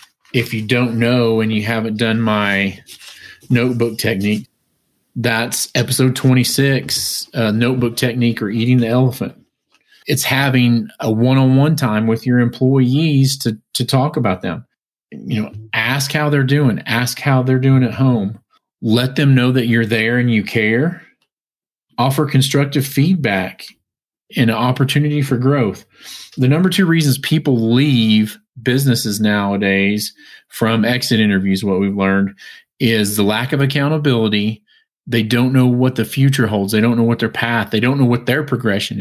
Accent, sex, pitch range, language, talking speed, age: American, male, 110-135 Hz, English, 155 wpm, 40-59